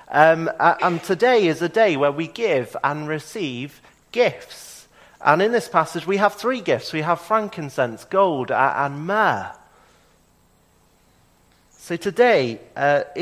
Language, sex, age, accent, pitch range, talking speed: English, male, 30-49, British, 140-195 Hz, 130 wpm